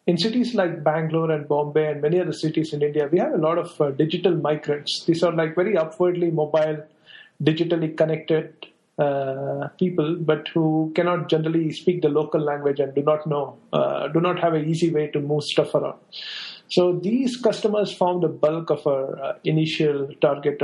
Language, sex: English, male